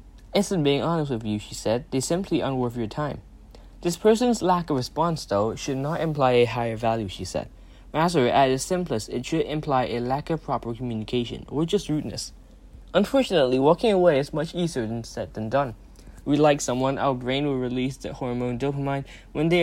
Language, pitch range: English, 110-155 Hz